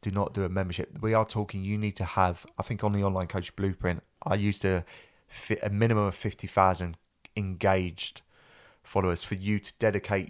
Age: 30-49